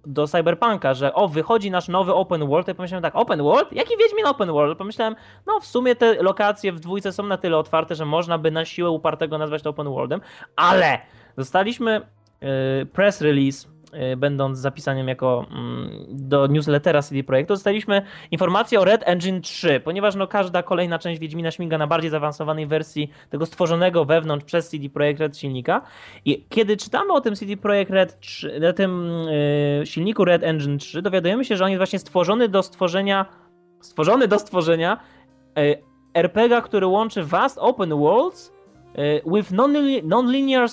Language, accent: Polish, native